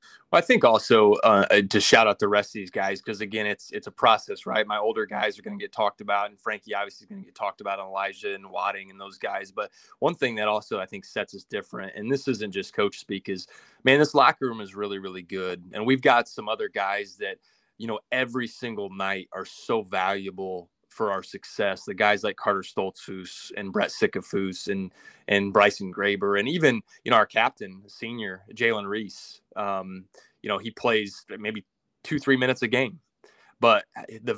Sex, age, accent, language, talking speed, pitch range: male, 20-39, American, English, 215 wpm, 100-135 Hz